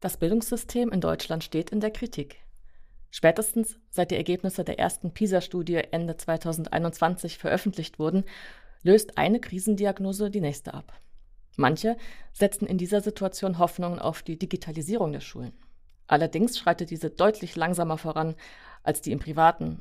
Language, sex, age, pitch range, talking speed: German, female, 30-49, 160-205 Hz, 140 wpm